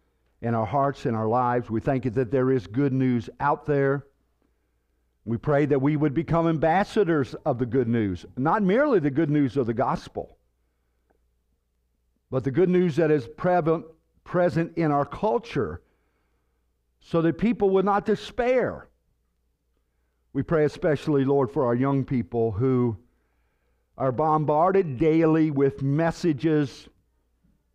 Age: 50-69